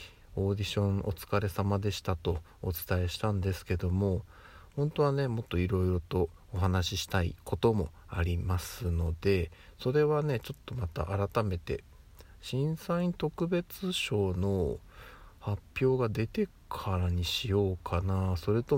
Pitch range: 85-100 Hz